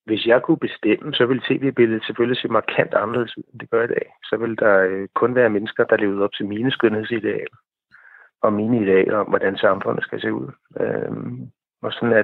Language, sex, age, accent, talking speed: Danish, male, 60-79, native, 200 wpm